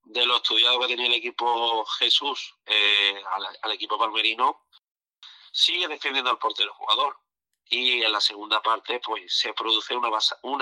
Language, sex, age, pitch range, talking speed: Spanish, male, 40-59, 110-185 Hz, 155 wpm